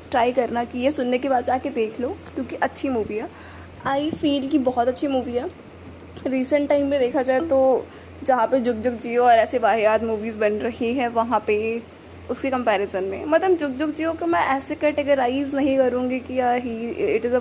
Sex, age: female, 20-39